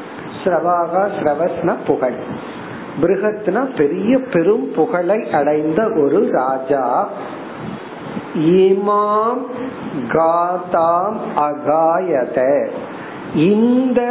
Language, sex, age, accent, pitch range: Tamil, male, 50-69, native, 155-195 Hz